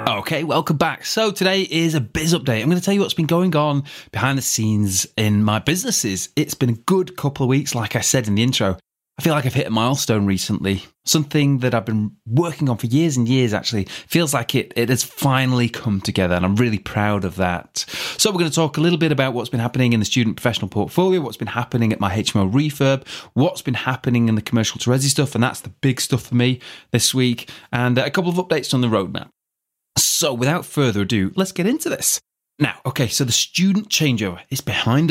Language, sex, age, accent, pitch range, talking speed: English, male, 30-49, British, 110-150 Hz, 230 wpm